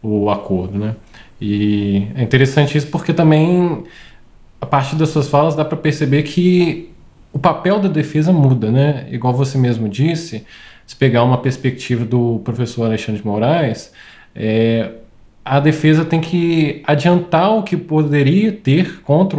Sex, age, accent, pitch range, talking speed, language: male, 20-39, Brazilian, 120-165 Hz, 150 wpm, Portuguese